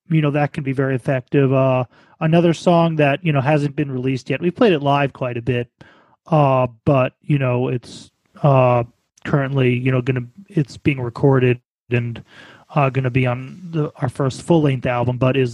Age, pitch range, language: 30-49, 125-155 Hz, English